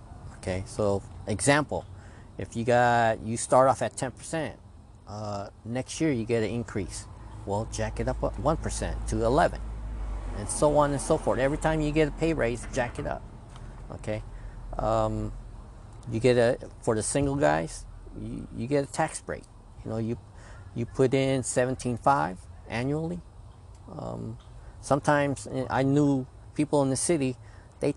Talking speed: 165 wpm